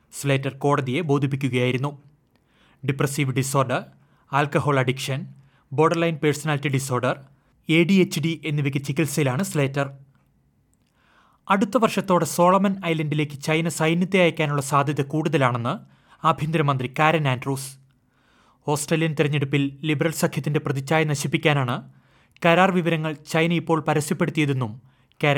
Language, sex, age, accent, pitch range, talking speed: Malayalam, male, 30-49, native, 135-160 Hz, 95 wpm